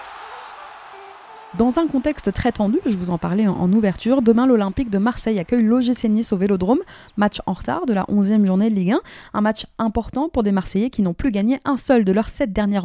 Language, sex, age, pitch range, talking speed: French, female, 20-39, 195-255 Hz, 220 wpm